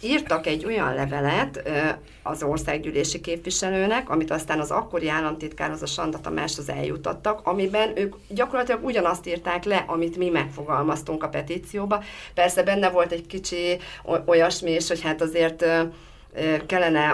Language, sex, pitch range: Hungarian, female, 155-180 Hz